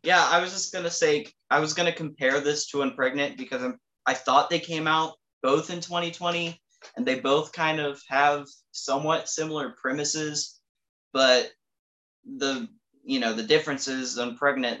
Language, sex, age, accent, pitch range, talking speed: English, male, 20-39, American, 110-155 Hz, 160 wpm